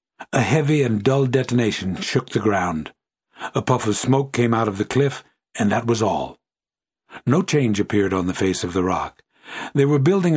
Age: 60-79